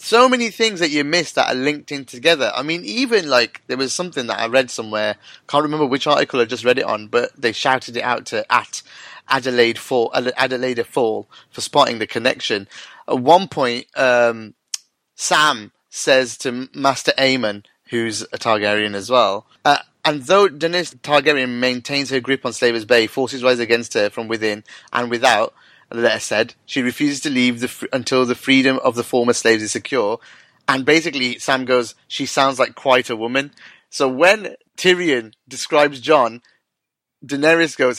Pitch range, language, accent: 125-155 Hz, English, British